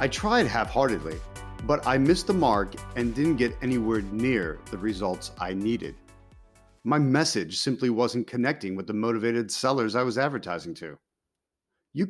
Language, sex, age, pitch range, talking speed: English, male, 40-59, 110-170 Hz, 155 wpm